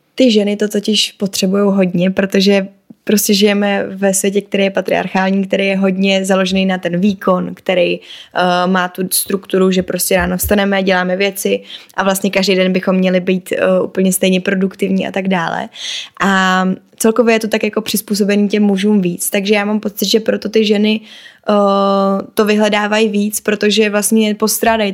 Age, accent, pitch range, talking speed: 20-39, native, 190-215 Hz, 165 wpm